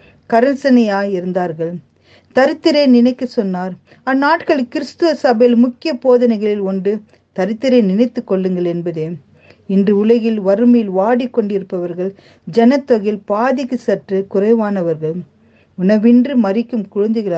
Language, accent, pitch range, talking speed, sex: Tamil, native, 195-255 Hz, 80 wpm, female